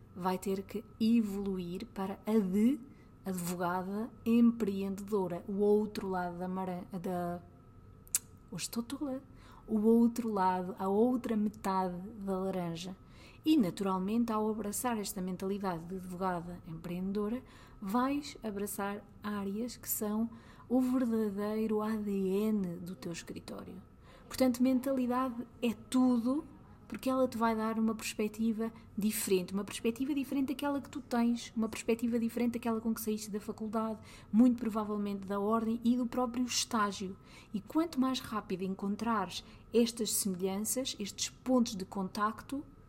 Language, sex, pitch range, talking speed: English, female, 195-235 Hz, 130 wpm